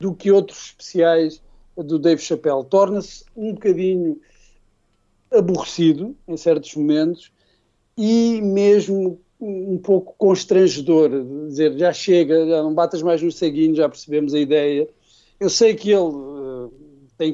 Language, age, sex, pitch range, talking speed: Portuguese, 50-69, male, 145-185 Hz, 135 wpm